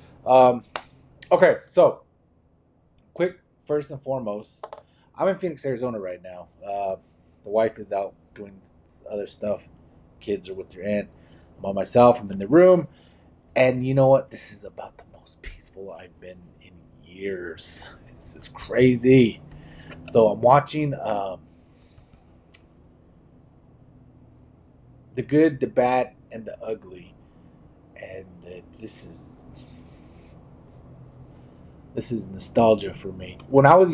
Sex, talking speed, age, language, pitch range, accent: male, 130 wpm, 30-49, English, 85-125 Hz, American